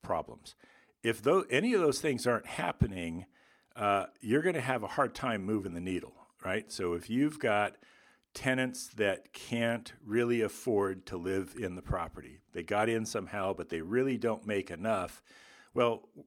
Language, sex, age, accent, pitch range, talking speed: English, male, 50-69, American, 90-120 Hz, 170 wpm